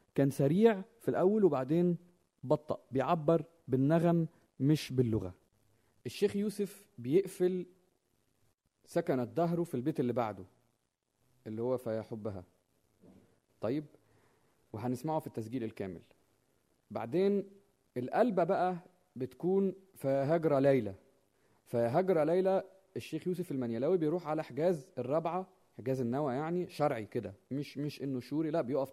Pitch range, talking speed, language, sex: 125-170 Hz, 110 wpm, Arabic, male